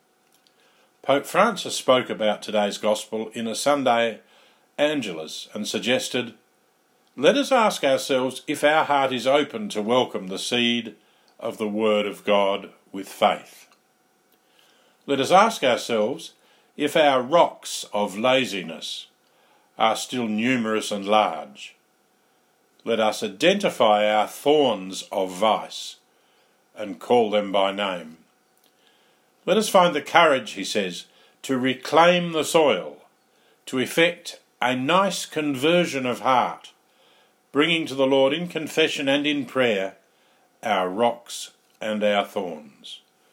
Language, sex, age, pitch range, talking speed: English, male, 50-69, 105-145 Hz, 125 wpm